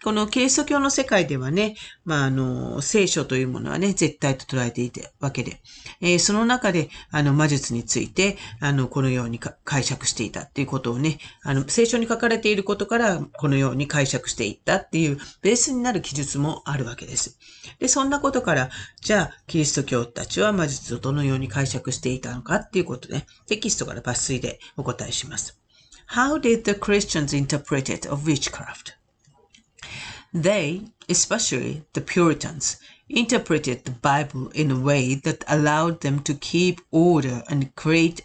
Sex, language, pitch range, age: female, Japanese, 130-180 Hz, 40-59